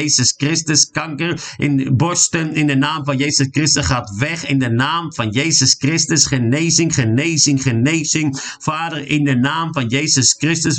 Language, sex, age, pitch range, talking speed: Dutch, male, 50-69, 135-160 Hz, 165 wpm